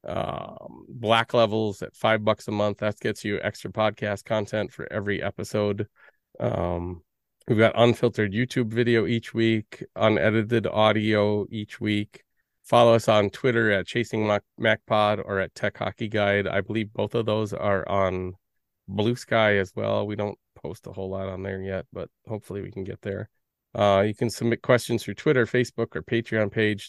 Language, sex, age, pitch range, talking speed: English, male, 30-49, 100-115 Hz, 175 wpm